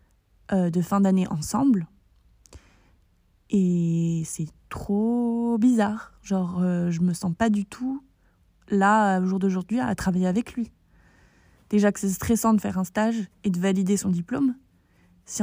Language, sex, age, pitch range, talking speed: French, female, 20-39, 180-220 Hz, 150 wpm